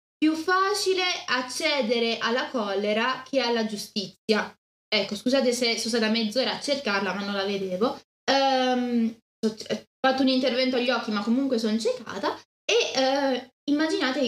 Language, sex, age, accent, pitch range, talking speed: Italian, female, 20-39, native, 230-280 Hz, 135 wpm